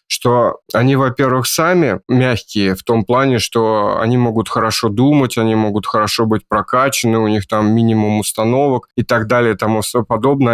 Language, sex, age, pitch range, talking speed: Russian, male, 20-39, 115-140 Hz, 165 wpm